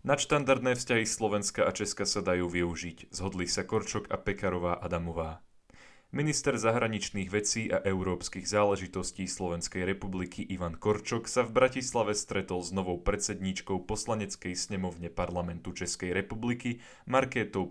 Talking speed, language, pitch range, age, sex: 125 wpm, Slovak, 90-110 Hz, 20-39, male